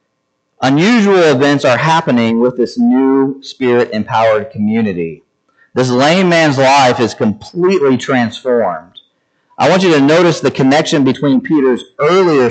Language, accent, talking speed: English, American, 125 wpm